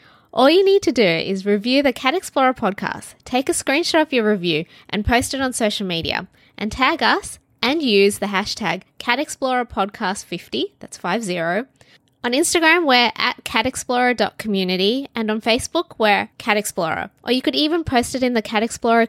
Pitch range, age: 210-275 Hz, 20-39